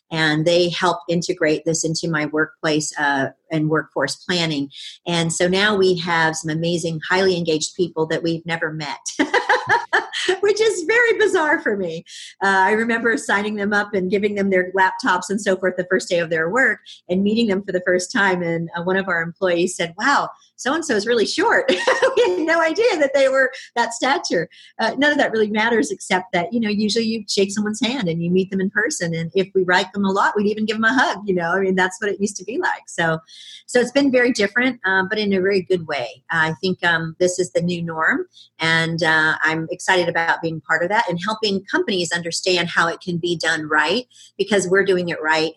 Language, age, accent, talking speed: English, 50-69, American, 225 wpm